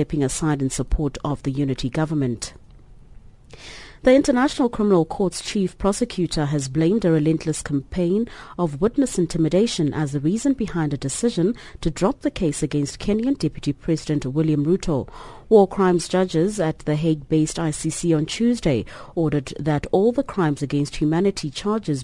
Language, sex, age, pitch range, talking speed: English, female, 30-49, 150-195 Hz, 150 wpm